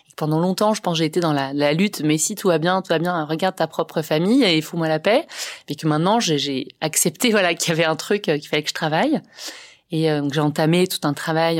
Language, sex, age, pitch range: French, female, 30-49, 155-200 Hz